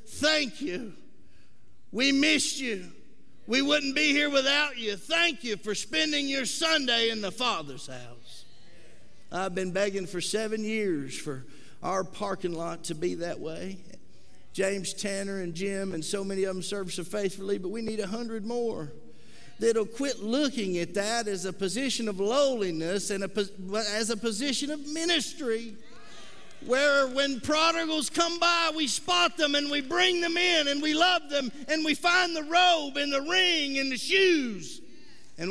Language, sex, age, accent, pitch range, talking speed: English, male, 50-69, American, 190-275 Hz, 165 wpm